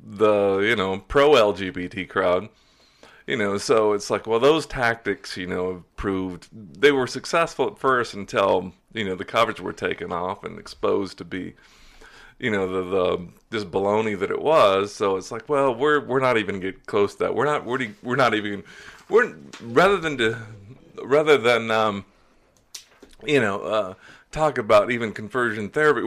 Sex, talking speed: male, 175 wpm